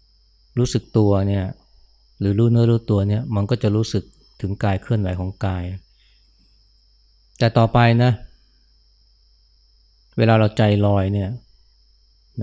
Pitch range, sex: 90-110 Hz, male